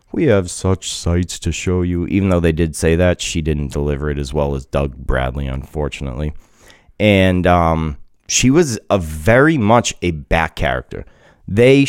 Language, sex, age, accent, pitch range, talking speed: English, male, 30-49, American, 80-105 Hz, 170 wpm